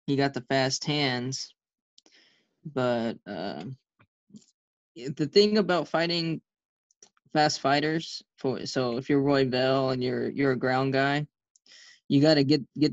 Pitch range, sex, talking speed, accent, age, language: 125-150 Hz, male, 140 wpm, American, 10-29, English